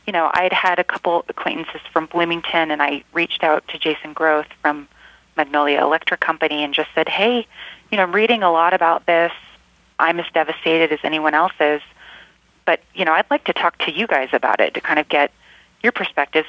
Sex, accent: female, American